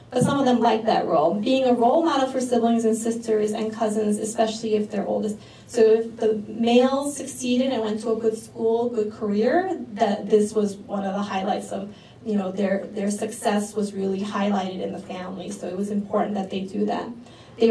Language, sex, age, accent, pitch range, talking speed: English, female, 20-39, American, 210-245 Hz, 210 wpm